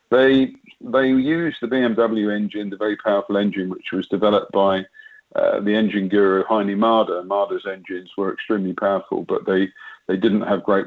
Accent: British